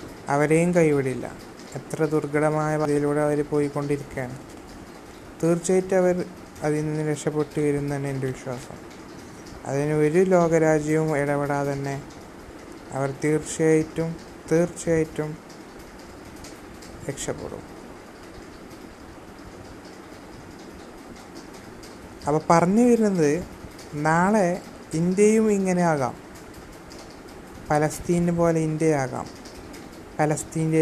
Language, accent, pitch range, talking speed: Malayalam, native, 145-165 Hz, 65 wpm